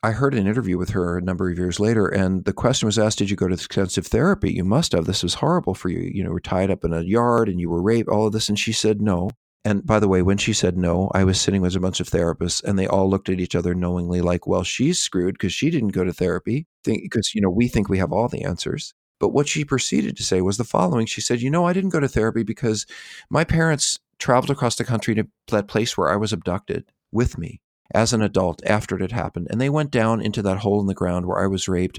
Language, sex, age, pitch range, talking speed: English, male, 40-59, 95-120 Hz, 280 wpm